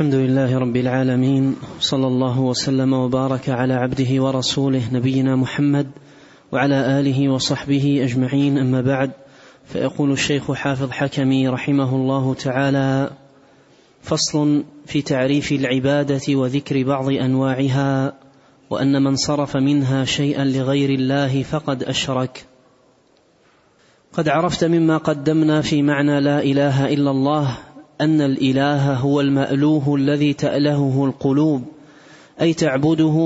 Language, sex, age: Arabic, male, 30-49